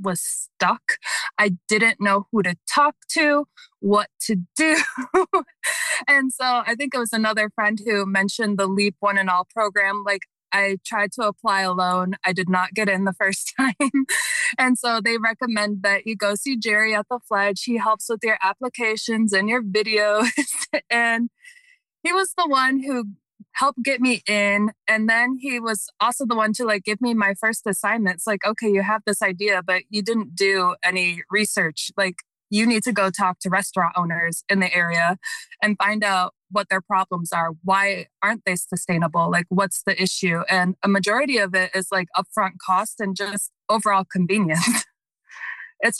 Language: English